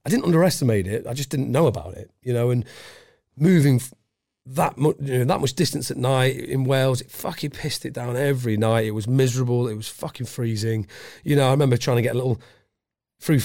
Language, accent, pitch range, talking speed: English, British, 115-145 Hz, 220 wpm